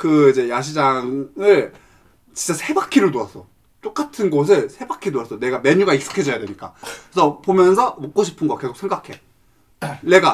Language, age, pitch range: Korean, 20-39, 125-195 Hz